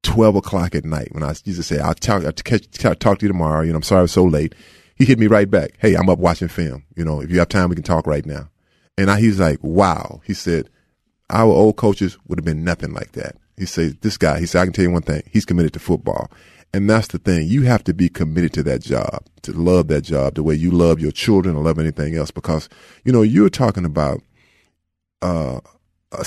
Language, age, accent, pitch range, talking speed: English, 30-49, American, 85-120 Hz, 260 wpm